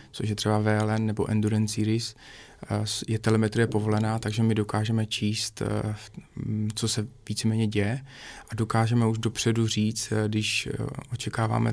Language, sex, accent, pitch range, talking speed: Czech, male, native, 105-115 Hz, 130 wpm